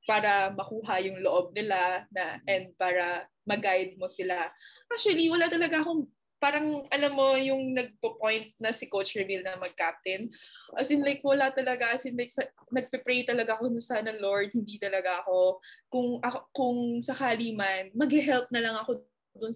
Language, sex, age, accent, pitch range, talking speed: Filipino, female, 20-39, native, 200-285 Hz, 165 wpm